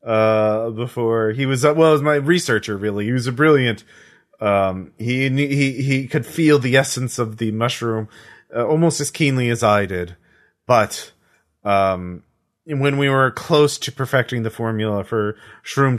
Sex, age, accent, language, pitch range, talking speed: male, 30-49, American, English, 110-140 Hz, 165 wpm